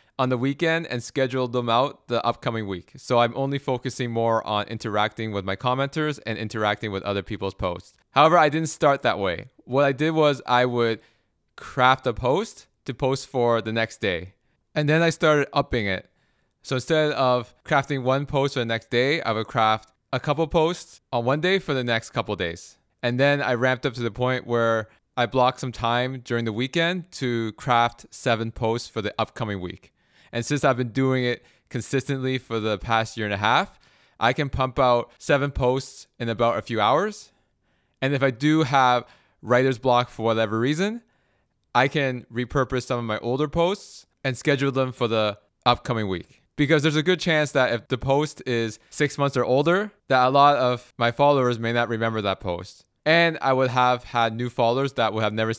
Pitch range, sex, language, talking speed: 110-135 Hz, male, English, 200 wpm